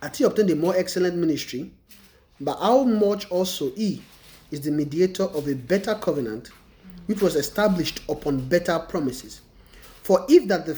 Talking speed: 160 wpm